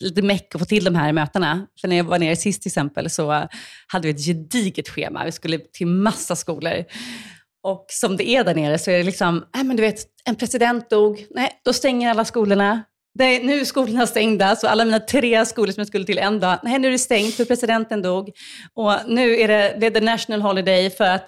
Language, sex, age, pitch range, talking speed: Swedish, female, 30-49, 165-225 Hz, 235 wpm